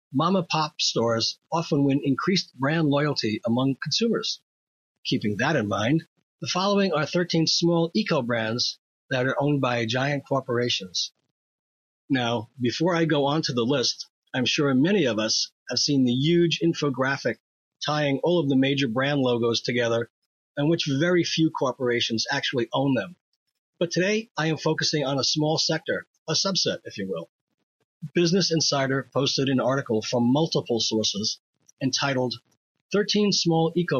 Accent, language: American, English